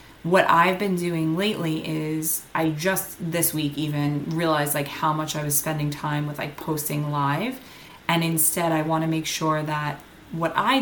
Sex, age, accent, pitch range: female, 20-39, American, 150-180 Hz